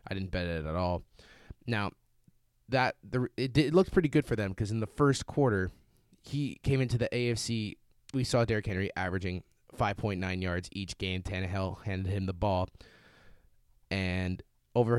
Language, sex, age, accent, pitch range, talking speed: English, male, 20-39, American, 95-115 Hz, 170 wpm